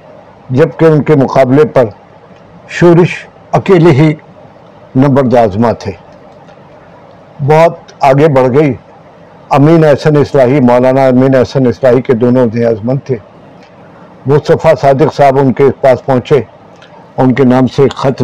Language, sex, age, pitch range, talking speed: Urdu, male, 50-69, 125-160 Hz, 125 wpm